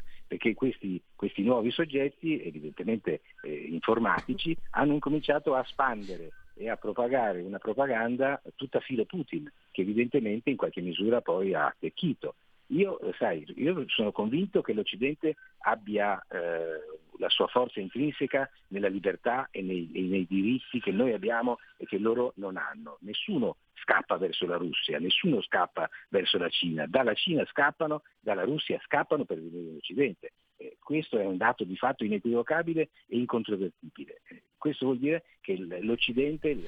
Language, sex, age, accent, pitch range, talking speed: Italian, male, 50-69, native, 105-155 Hz, 145 wpm